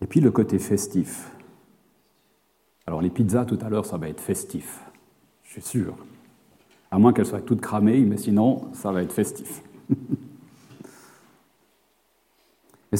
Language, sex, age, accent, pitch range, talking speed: French, male, 40-59, French, 100-135 Hz, 145 wpm